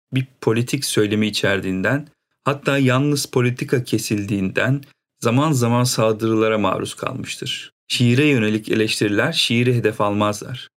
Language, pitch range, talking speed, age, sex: Turkish, 110-140 Hz, 105 wpm, 40-59, male